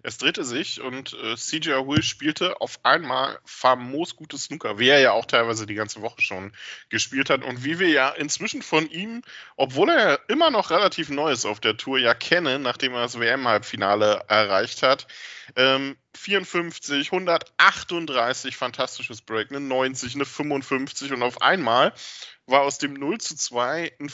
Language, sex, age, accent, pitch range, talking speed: German, male, 10-29, German, 125-165 Hz, 170 wpm